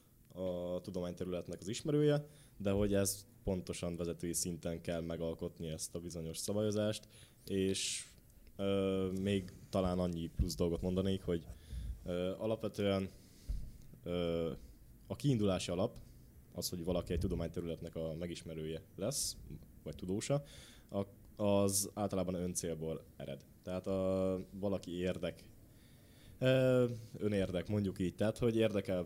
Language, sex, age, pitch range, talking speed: Hungarian, male, 20-39, 85-105 Hz, 115 wpm